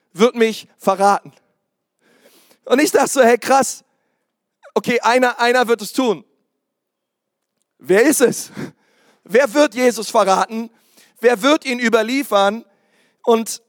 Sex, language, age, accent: male, German, 40-59, German